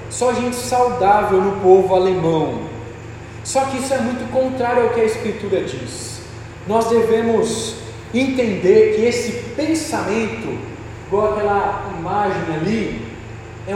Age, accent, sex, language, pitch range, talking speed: 20-39, Brazilian, male, Portuguese, 200-255 Hz, 120 wpm